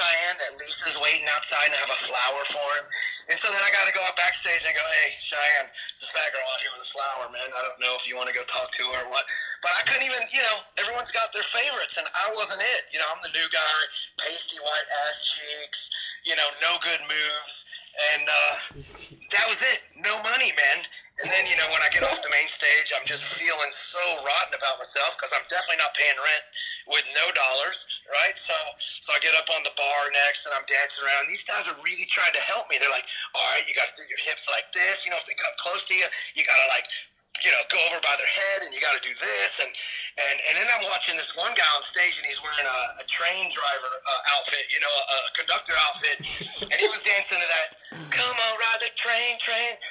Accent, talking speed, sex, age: American, 245 wpm, male, 30-49